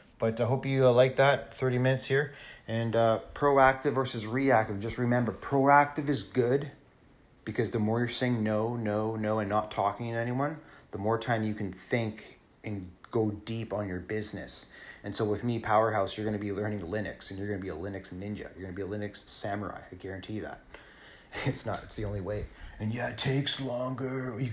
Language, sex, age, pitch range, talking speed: English, male, 30-49, 100-120 Hz, 215 wpm